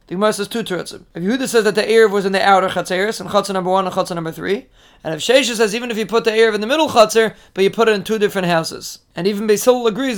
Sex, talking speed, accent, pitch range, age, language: male, 285 wpm, American, 195-225 Hz, 30-49, English